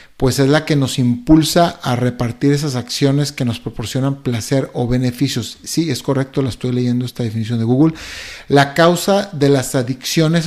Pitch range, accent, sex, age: 125-150 Hz, Mexican, male, 50-69